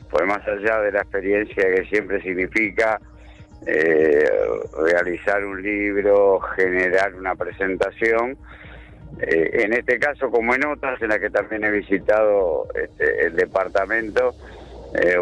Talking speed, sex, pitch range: 130 wpm, male, 95-120 Hz